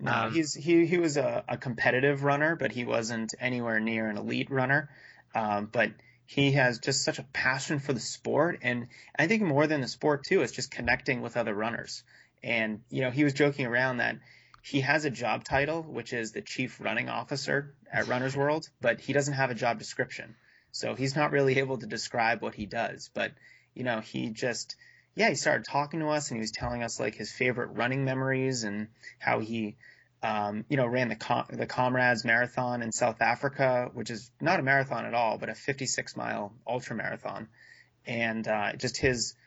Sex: male